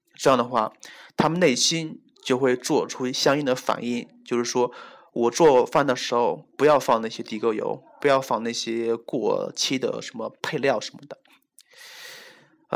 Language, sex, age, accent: Chinese, male, 20-39, native